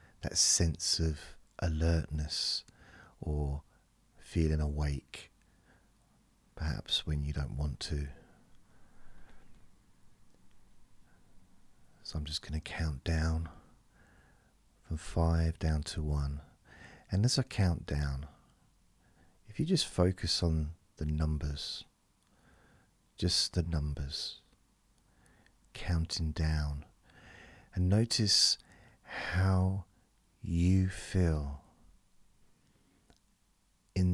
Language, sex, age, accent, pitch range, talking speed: English, male, 40-59, British, 75-90 Hz, 80 wpm